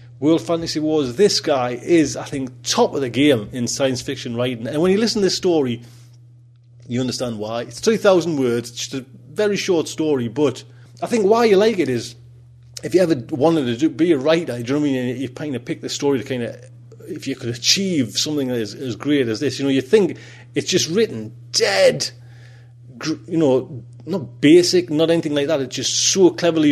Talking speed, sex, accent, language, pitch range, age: 210 wpm, male, British, English, 120-155 Hz, 30-49